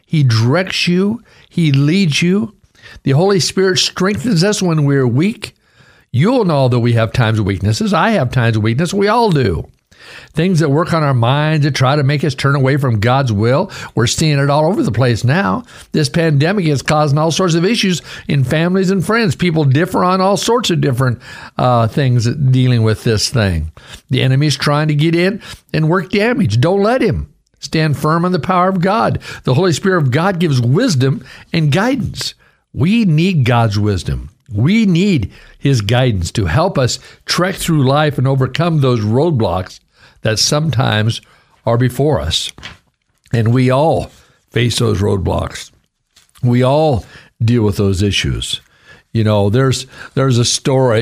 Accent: American